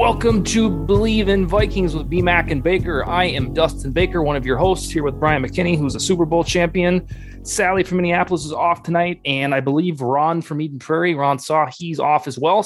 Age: 20-39